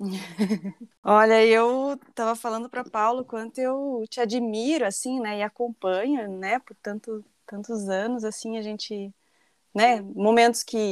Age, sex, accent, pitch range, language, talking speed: 20-39, female, Brazilian, 210-255 Hz, Portuguese, 135 wpm